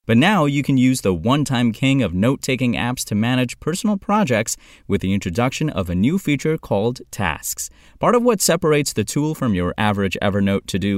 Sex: male